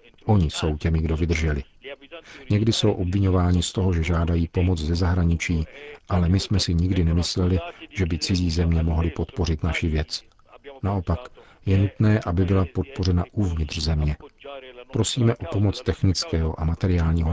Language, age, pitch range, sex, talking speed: Czech, 50-69, 85-100 Hz, male, 150 wpm